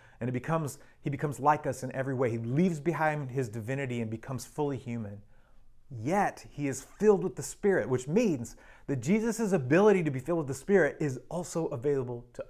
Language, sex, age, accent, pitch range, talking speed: English, male, 30-49, American, 120-150 Hz, 195 wpm